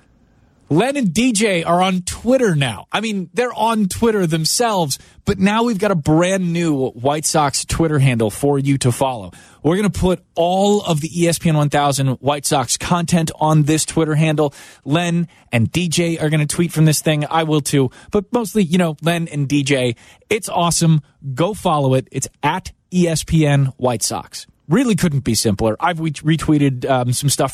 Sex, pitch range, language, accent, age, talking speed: male, 130-170 Hz, English, American, 20-39, 180 wpm